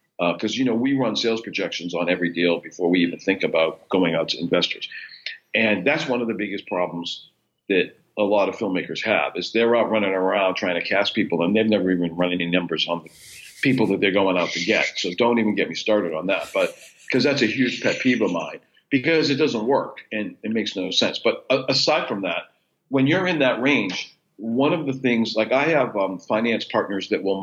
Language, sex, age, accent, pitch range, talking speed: English, male, 50-69, American, 95-125 Hz, 230 wpm